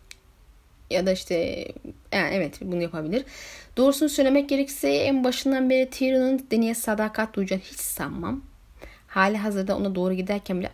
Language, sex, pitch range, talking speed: Turkish, female, 200-275 Hz, 140 wpm